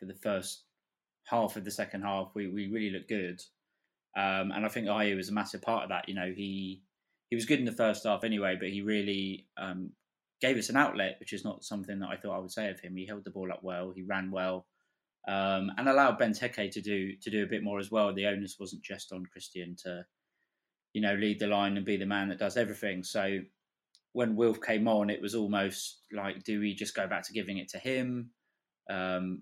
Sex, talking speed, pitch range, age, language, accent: male, 240 wpm, 95-105 Hz, 20-39, English, British